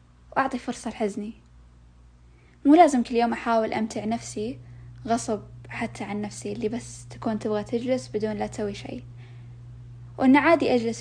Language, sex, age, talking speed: Arabic, female, 10-29, 140 wpm